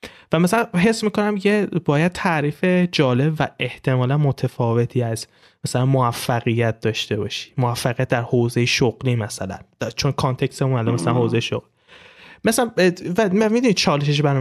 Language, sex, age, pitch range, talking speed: Persian, male, 20-39, 130-180 Hz, 135 wpm